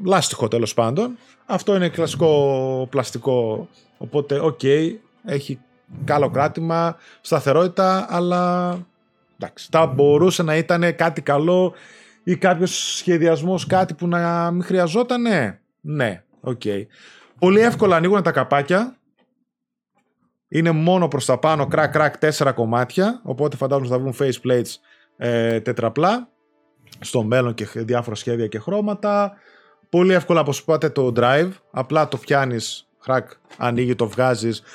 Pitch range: 120-175 Hz